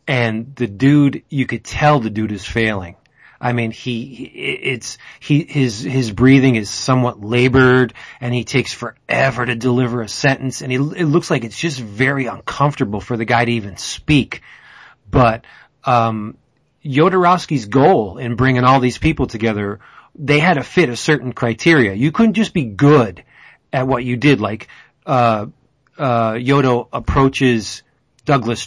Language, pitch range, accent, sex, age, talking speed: English, 115-145 Hz, American, male, 30-49, 160 wpm